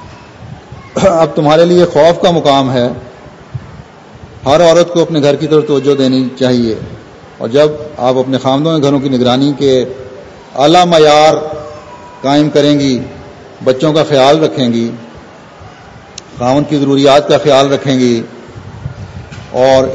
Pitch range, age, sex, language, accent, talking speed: 125-150 Hz, 40-59, male, English, Indian, 130 wpm